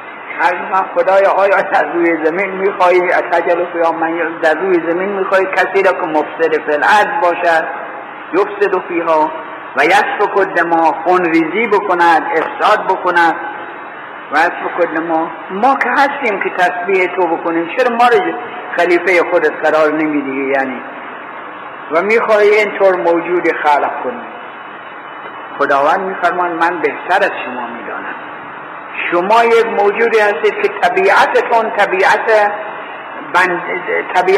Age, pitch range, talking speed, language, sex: 60-79, 170-210 Hz, 120 wpm, Persian, male